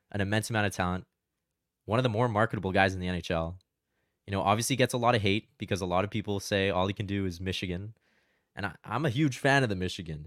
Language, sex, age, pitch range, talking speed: English, male, 20-39, 95-120 Hz, 245 wpm